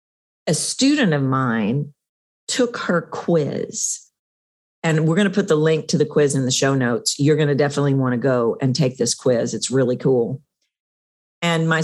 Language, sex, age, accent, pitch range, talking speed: English, female, 50-69, American, 130-170 Hz, 190 wpm